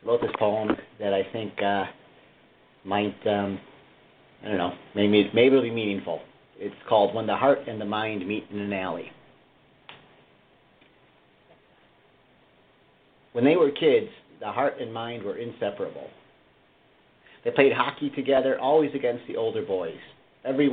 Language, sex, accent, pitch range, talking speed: English, male, American, 105-135 Hz, 140 wpm